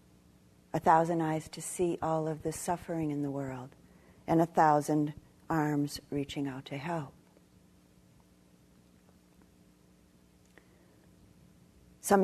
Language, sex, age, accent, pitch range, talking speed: English, female, 50-69, American, 125-165 Hz, 105 wpm